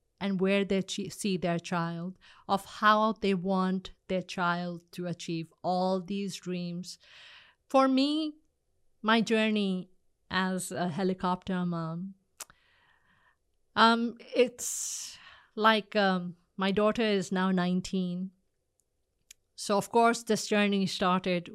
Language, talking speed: English, 110 wpm